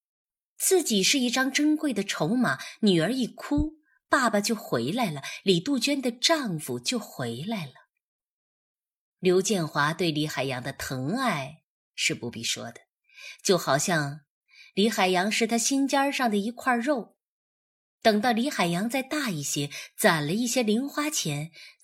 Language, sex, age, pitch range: Chinese, female, 20-39, 155-245 Hz